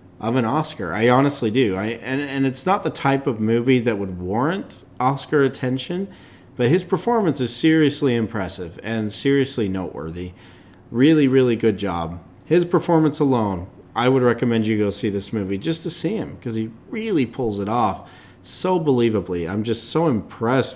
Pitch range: 100-145 Hz